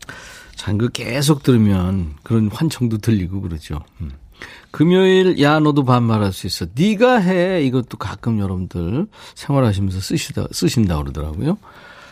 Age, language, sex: 40-59, Korean, male